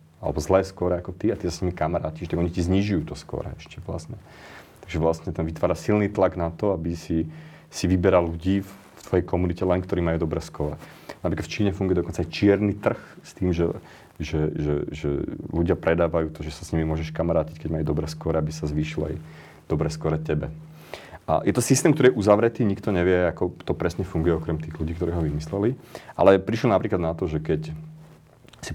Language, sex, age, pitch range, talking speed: Slovak, male, 30-49, 80-90 Hz, 210 wpm